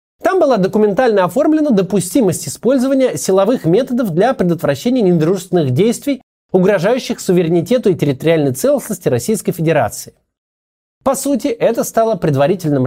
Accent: native